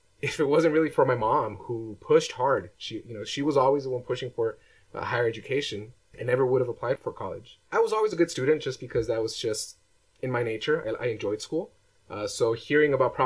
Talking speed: 240 wpm